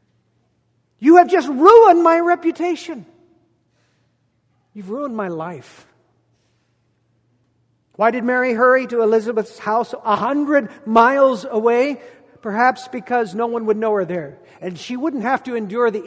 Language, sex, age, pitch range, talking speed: English, male, 50-69, 190-250 Hz, 135 wpm